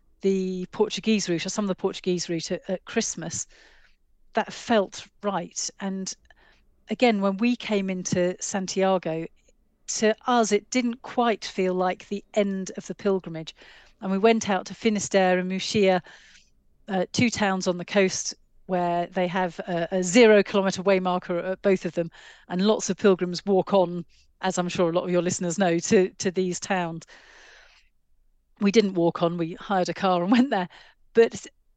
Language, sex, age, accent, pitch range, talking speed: English, female, 40-59, British, 180-210 Hz, 175 wpm